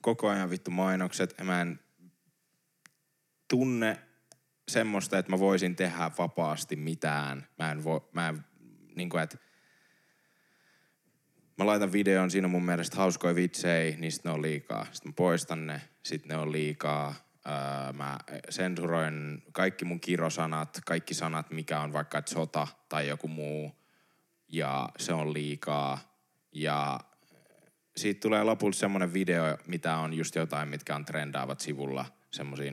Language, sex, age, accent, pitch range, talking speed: Finnish, male, 10-29, native, 80-110 Hz, 140 wpm